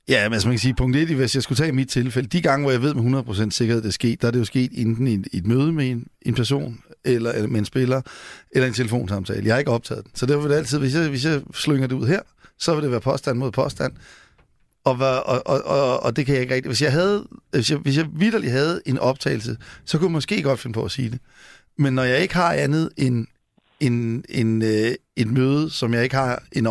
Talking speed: 265 wpm